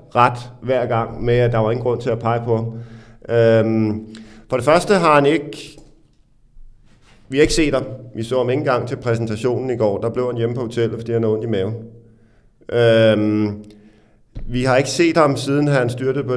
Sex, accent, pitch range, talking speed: male, native, 110-130 Hz, 205 wpm